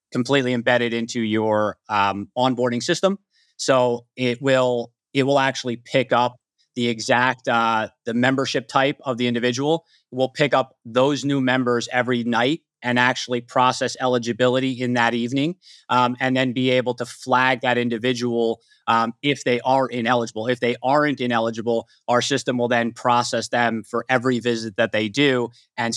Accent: American